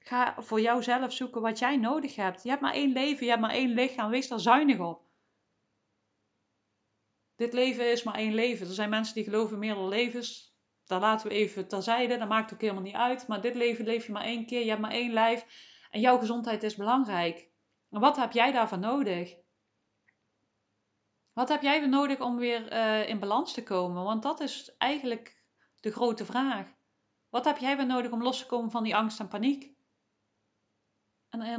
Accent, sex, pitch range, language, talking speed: Dutch, female, 210-245 Hz, Dutch, 195 wpm